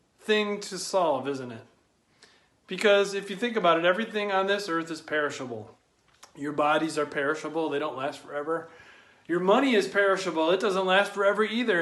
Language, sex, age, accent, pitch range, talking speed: English, male, 40-59, American, 165-215 Hz, 175 wpm